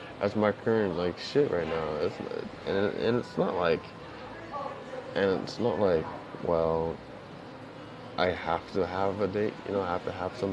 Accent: American